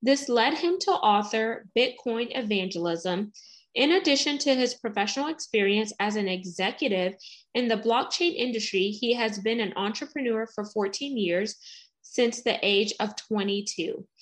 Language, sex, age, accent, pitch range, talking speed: English, female, 20-39, American, 205-265 Hz, 140 wpm